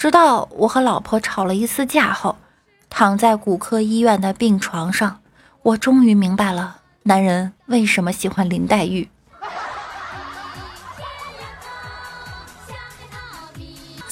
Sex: female